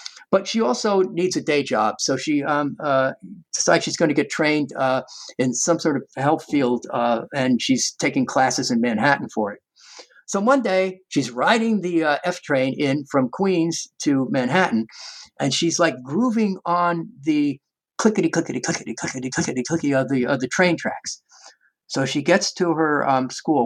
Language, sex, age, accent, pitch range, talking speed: English, male, 50-69, American, 140-195 Hz, 170 wpm